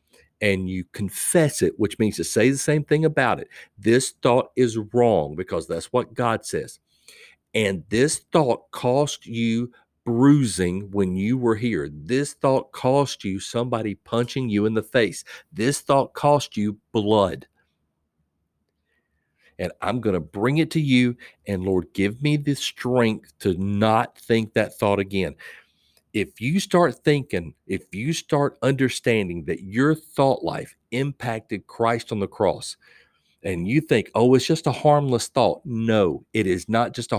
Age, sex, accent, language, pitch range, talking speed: 50-69, male, American, English, 95-130 Hz, 160 wpm